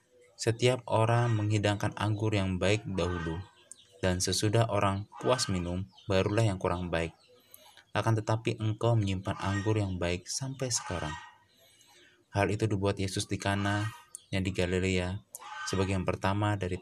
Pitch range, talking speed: 90-110 Hz, 135 wpm